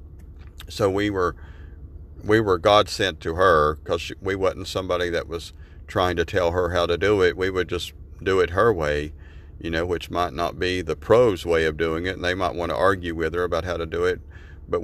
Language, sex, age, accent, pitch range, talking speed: English, male, 40-59, American, 80-90 Hz, 225 wpm